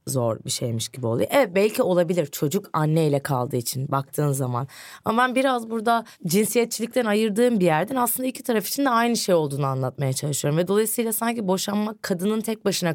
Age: 20-39